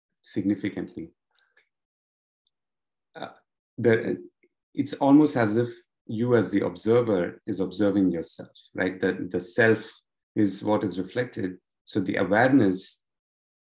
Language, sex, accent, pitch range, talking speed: English, male, Indian, 100-120 Hz, 110 wpm